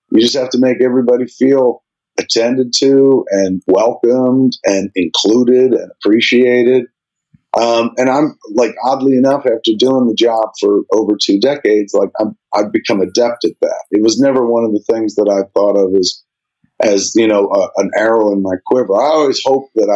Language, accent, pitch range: German, American, 105-130 Hz